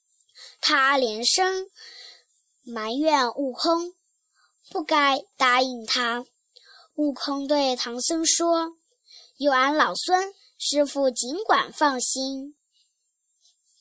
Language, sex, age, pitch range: Chinese, male, 10-29, 240-320 Hz